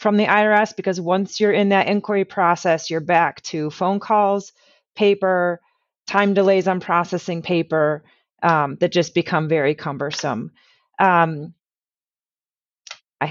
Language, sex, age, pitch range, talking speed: English, female, 30-49, 170-200 Hz, 130 wpm